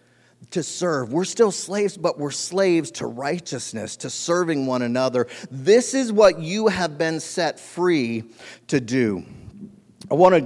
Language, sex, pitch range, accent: English, male, 120-175 Hz, American